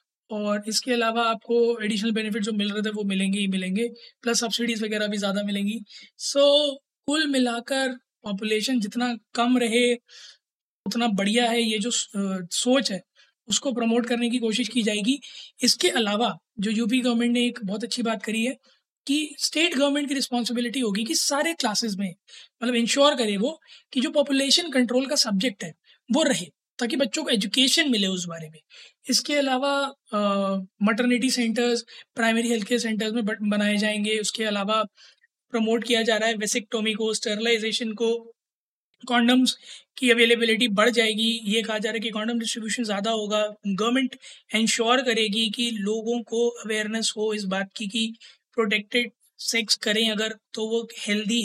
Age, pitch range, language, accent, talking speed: 20-39, 215-245 Hz, Hindi, native, 165 wpm